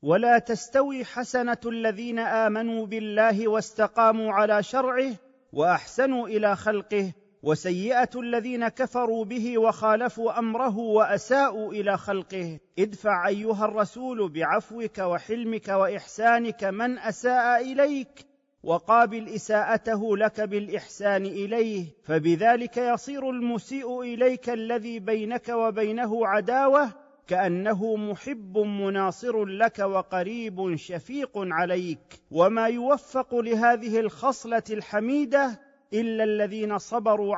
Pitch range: 195-240 Hz